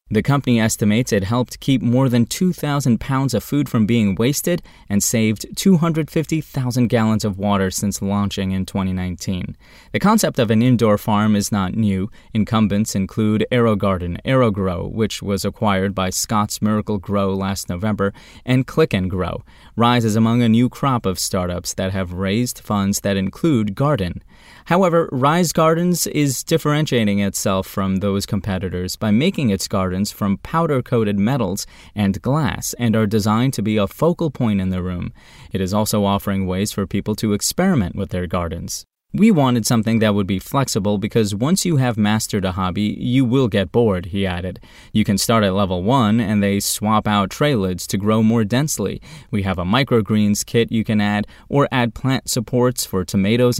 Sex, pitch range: male, 100-125 Hz